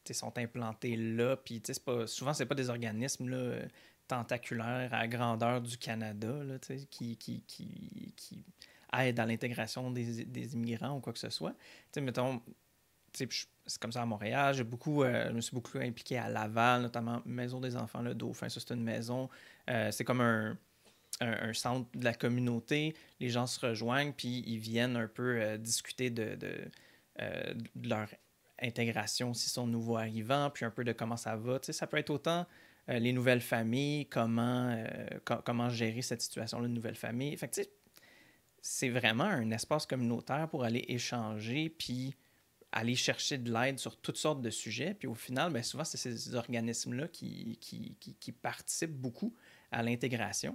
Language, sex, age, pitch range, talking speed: French, male, 30-49, 115-130 Hz, 180 wpm